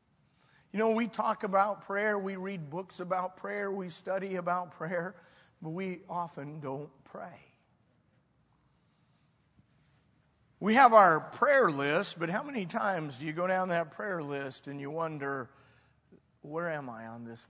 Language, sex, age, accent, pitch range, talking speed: English, male, 40-59, American, 145-230 Hz, 150 wpm